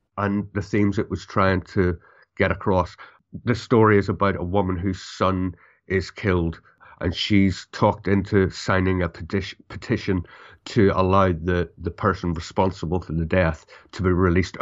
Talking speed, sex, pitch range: 160 wpm, male, 85-100 Hz